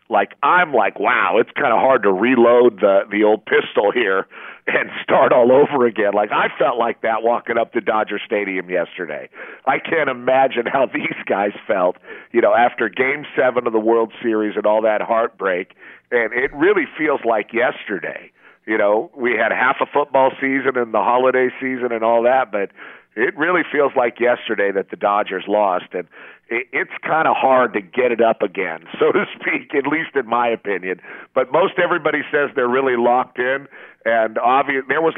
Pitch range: 110-130 Hz